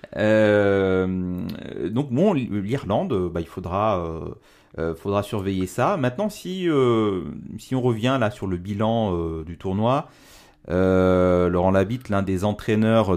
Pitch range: 90-120 Hz